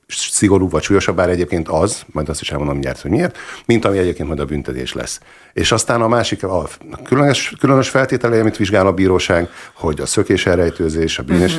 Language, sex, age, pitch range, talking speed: Hungarian, male, 50-69, 75-100 Hz, 190 wpm